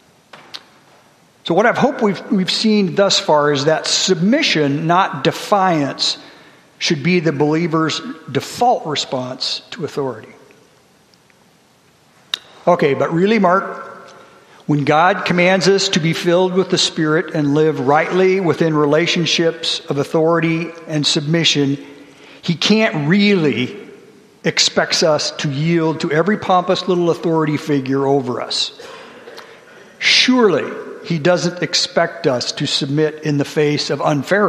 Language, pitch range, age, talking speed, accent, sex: English, 150-190 Hz, 50-69, 125 wpm, American, male